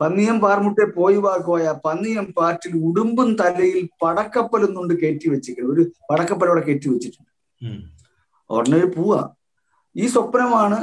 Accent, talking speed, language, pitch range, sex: native, 110 wpm, Malayalam, 170-225 Hz, male